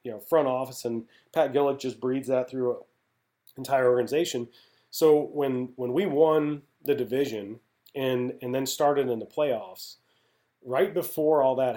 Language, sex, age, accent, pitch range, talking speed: English, male, 30-49, American, 120-135 Hz, 165 wpm